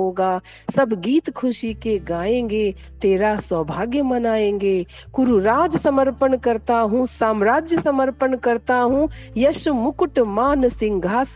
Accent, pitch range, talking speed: native, 200-265 Hz, 110 wpm